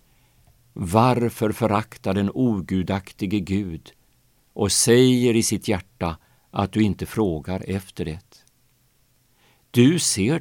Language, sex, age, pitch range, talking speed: Swedish, male, 50-69, 95-125 Hz, 105 wpm